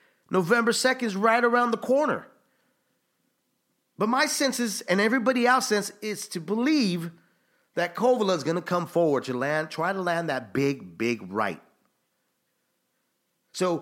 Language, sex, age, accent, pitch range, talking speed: English, male, 40-59, American, 180-240 Hz, 150 wpm